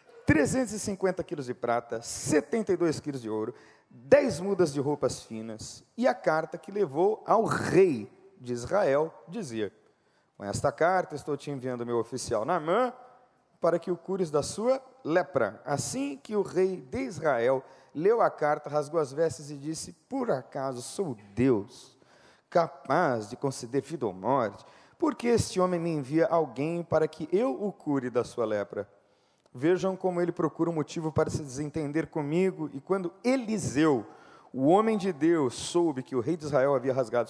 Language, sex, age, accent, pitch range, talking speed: Spanish, male, 40-59, Brazilian, 140-185 Hz, 165 wpm